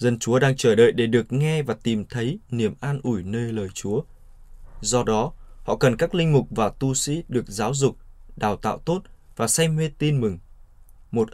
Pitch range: 105-140 Hz